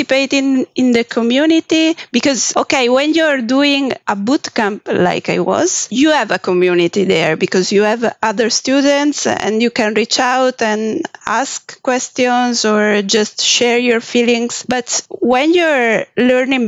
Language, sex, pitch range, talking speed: English, female, 215-270 Hz, 150 wpm